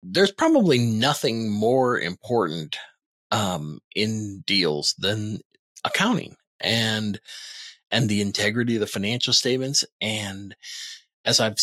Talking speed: 110 wpm